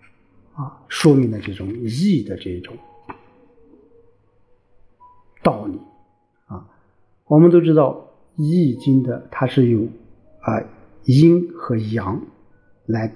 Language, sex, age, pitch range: Chinese, male, 50-69, 105-155 Hz